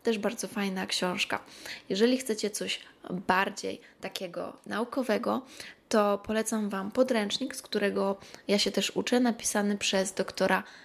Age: 20-39